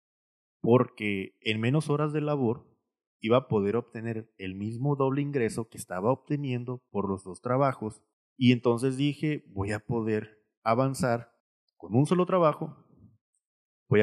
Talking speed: 140 wpm